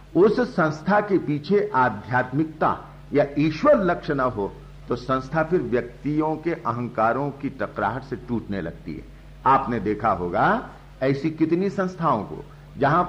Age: 50-69